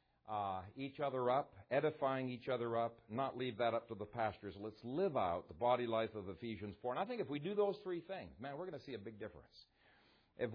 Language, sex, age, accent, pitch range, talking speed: English, male, 50-69, American, 105-135 Hz, 240 wpm